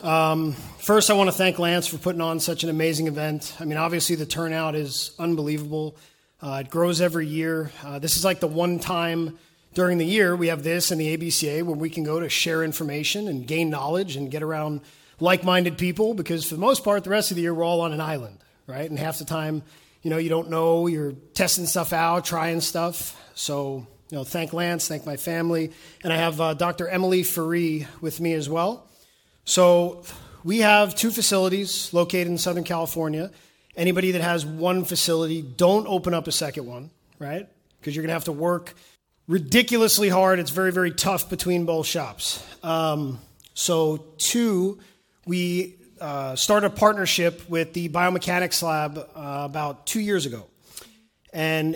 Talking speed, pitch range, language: 185 wpm, 155-180 Hz, English